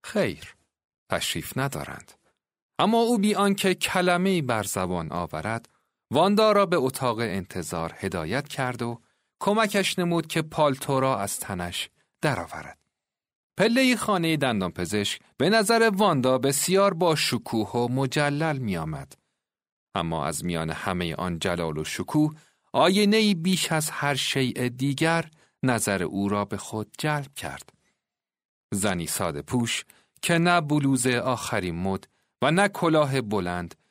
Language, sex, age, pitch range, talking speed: Persian, male, 40-59, 105-170 Hz, 125 wpm